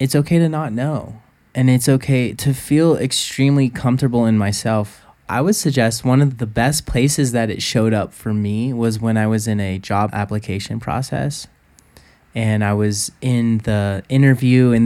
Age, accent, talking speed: 20-39, American, 180 wpm